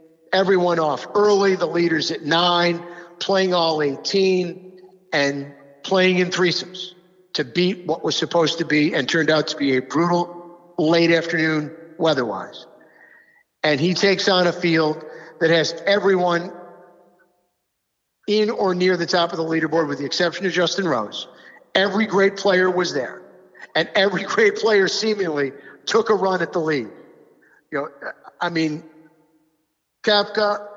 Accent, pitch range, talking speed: American, 160-190 Hz, 145 wpm